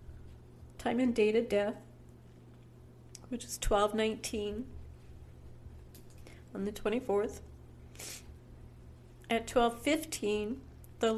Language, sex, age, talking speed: English, female, 40-59, 90 wpm